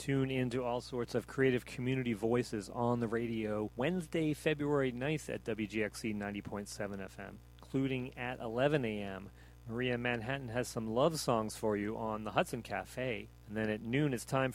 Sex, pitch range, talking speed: male, 110-135 Hz, 170 wpm